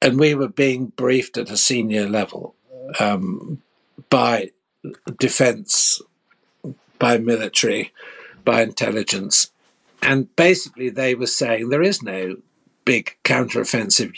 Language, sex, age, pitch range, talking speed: English, male, 60-79, 120-155 Hz, 110 wpm